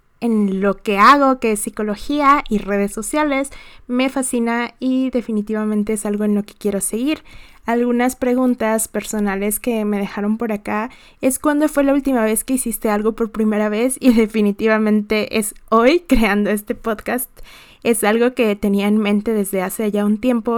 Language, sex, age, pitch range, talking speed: Spanish, female, 20-39, 205-240 Hz, 170 wpm